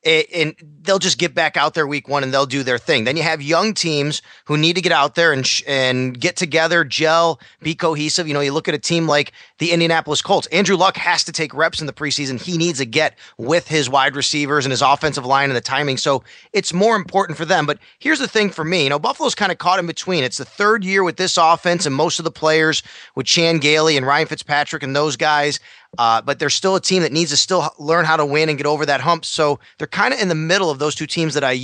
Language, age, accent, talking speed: English, 30-49, American, 265 wpm